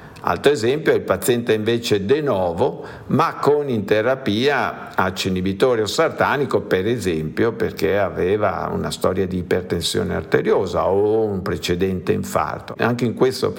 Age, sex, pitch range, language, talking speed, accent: 50-69, male, 100-125 Hz, Italian, 140 wpm, native